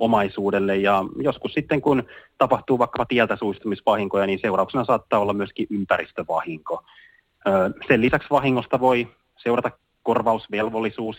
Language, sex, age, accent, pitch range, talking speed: Finnish, male, 30-49, native, 100-120 Hz, 115 wpm